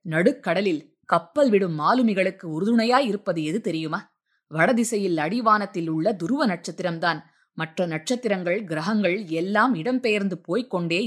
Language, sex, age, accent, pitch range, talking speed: Tamil, female, 20-39, native, 170-225 Hz, 110 wpm